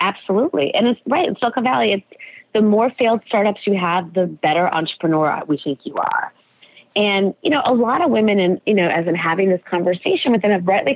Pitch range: 175-230 Hz